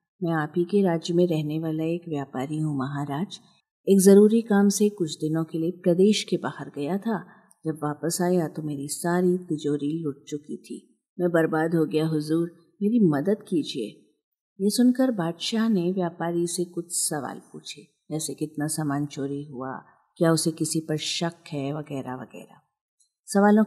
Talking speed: 165 wpm